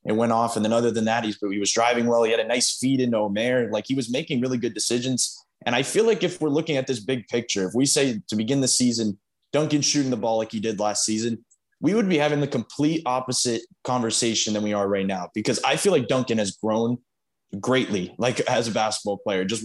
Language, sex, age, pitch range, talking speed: English, male, 20-39, 110-125 Hz, 250 wpm